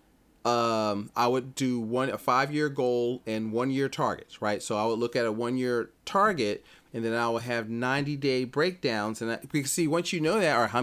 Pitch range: 120-155 Hz